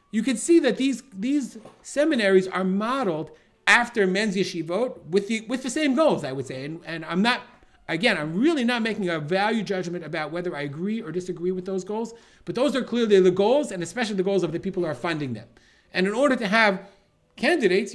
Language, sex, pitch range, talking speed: English, male, 165-220 Hz, 215 wpm